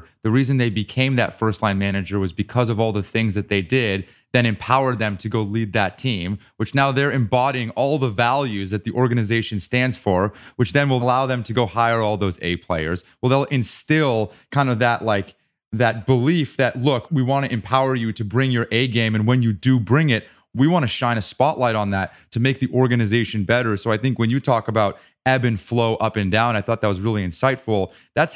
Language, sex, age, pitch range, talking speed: English, male, 20-39, 110-130 Hz, 230 wpm